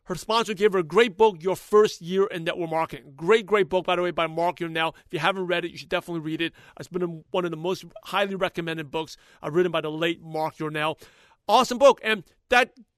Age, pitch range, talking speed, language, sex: 40-59, 180-240 Hz, 235 wpm, English, male